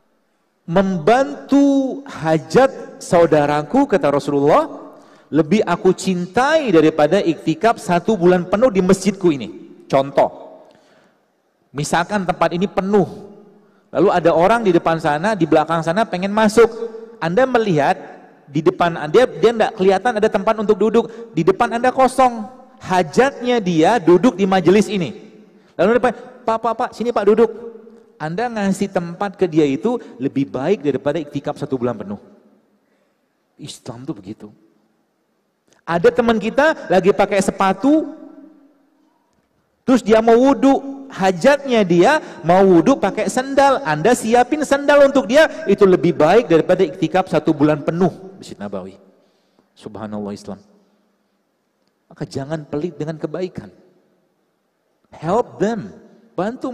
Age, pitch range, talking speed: 40-59, 170-240 Hz, 125 wpm